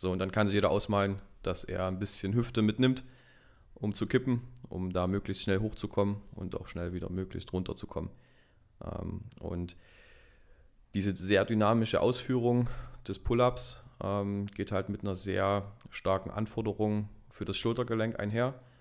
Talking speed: 145 wpm